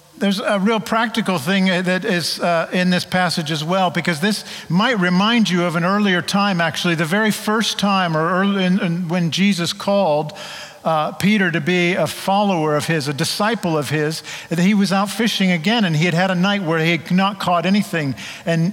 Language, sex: English, male